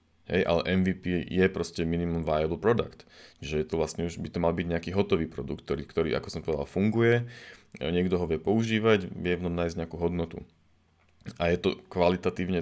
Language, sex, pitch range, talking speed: Slovak, male, 80-90 Hz, 180 wpm